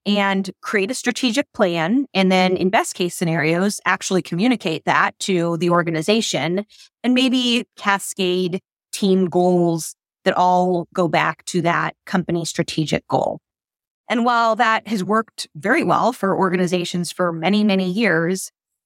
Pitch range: 175-215 Hz